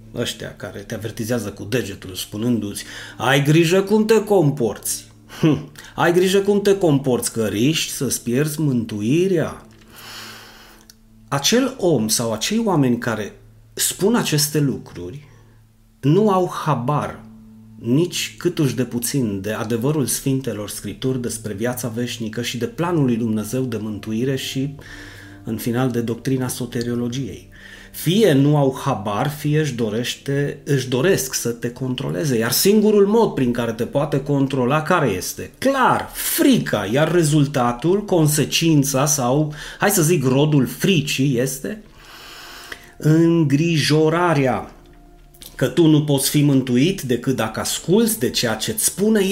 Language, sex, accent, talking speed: Romanian, male, native, 130 wpm